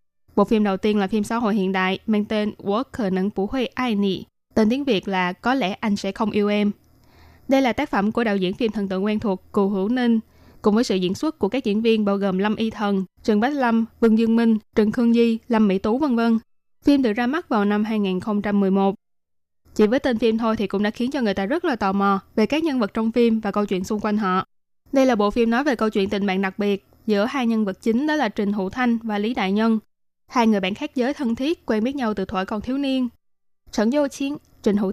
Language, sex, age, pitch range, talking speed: Vietnamese, female, 10-29, 200-240 Hz, 260 wpm